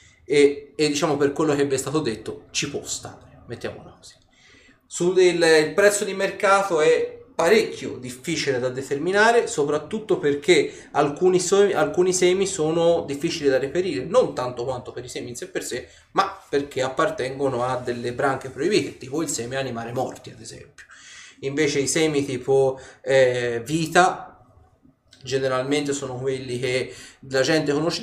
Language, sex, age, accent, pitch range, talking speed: Italian, male, 30-49, native, 130-170 Hz, 155 wpm